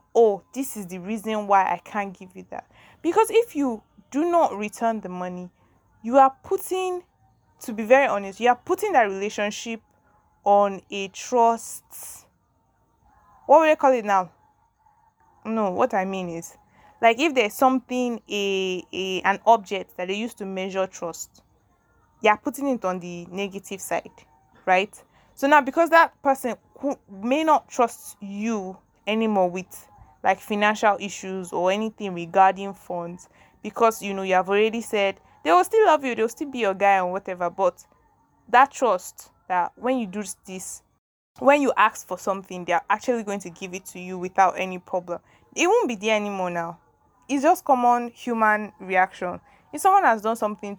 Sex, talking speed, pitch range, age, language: female, 175 wpm, 190-250 Hz, 20-39, English